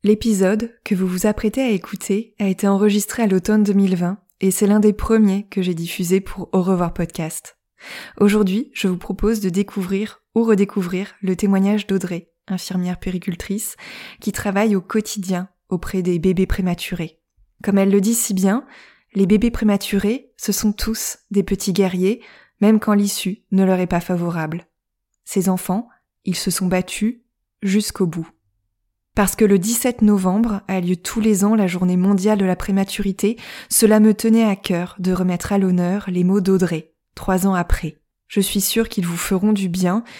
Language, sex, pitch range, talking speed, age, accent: French, female, 185-210 Hz, 175 wpm, 20-39, French